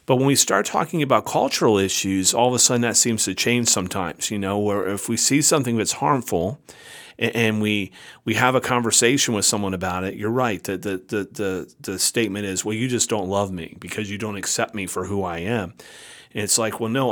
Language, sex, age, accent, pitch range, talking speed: English, male, 40-59, American, 95-120 Hz, 225 wpm